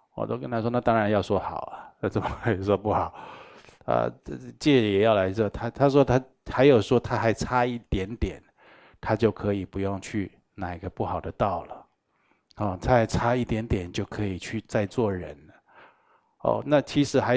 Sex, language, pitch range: male, Chinese, 100-125 Hz